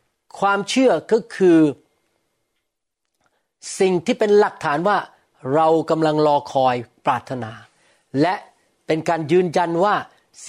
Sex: male